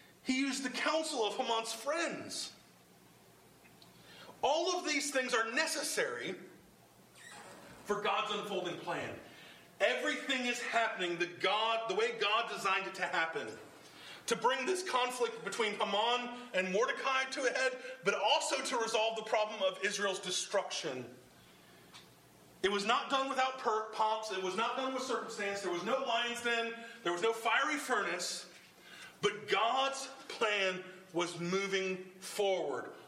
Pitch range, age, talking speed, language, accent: 175-260 Hz, 40-59, 140 wpm, English, American